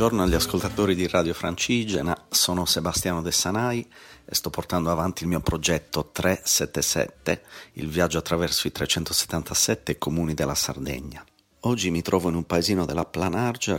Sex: male